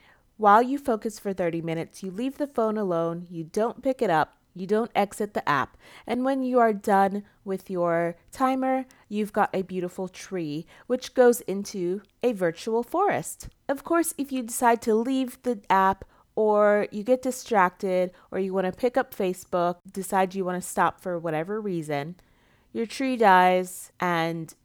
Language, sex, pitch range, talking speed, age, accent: English, female, 175-235 Hz, 175 wpm, 30-49, American